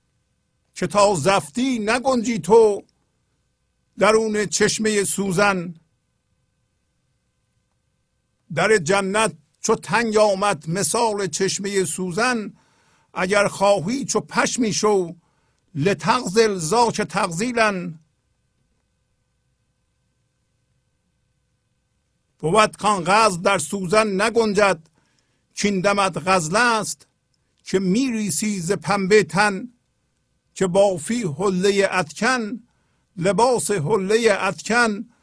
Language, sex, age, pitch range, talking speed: Persian, male, 50-69, 170-215 Hz, 80 wpm